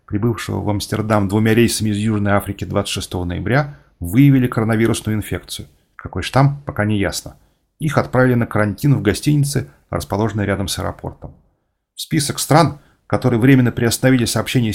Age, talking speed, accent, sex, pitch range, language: 30-49, 140 wpm, native, male, 105-130 Hz, Russian